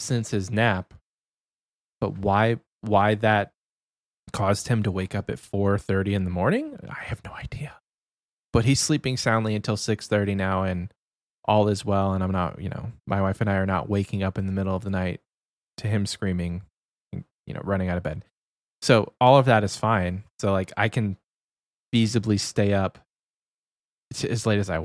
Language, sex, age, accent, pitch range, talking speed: English, male, 20-39, American, 95-115 Hz, 190 wpm